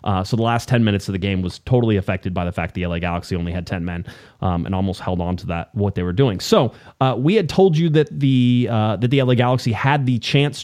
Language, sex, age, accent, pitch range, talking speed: English, male, 30-49, American, 105-140 Hz, 275 wpm